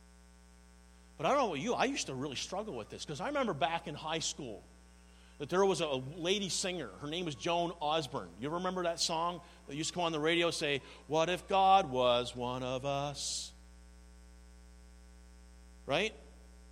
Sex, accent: male, American